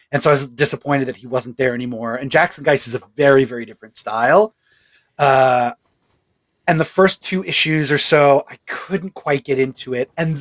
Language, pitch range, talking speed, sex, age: English, 130-170 Hz, 195 wpm, male, 30-49